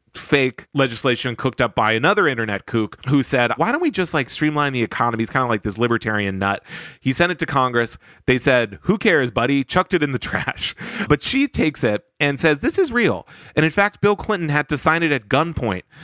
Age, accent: 30-49, American